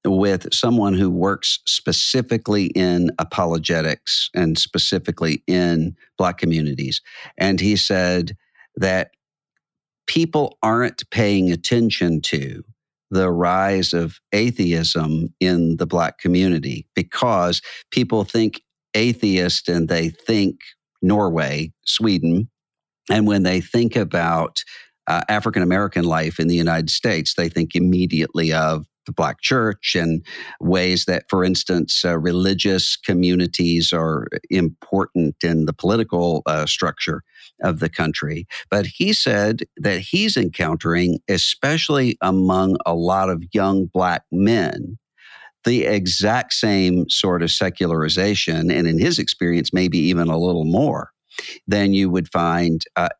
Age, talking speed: 50-69, 125 wpm